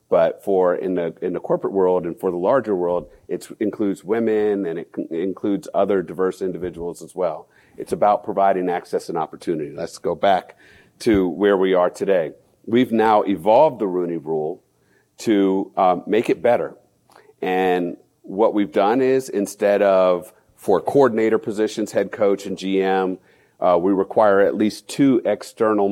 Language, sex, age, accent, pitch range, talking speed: English, male, 40-59, American, 90-110 Hz, 165 wpm